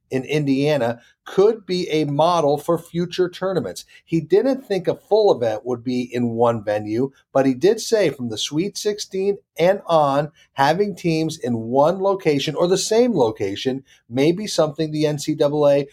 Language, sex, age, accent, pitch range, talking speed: English, male, 40-59, American, 125-165 Hz, 165 wpm